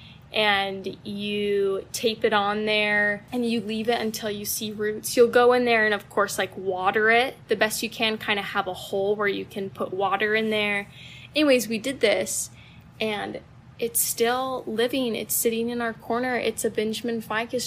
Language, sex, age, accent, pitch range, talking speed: English, female, 10-29, American, 200-235 Hz, 195 wpm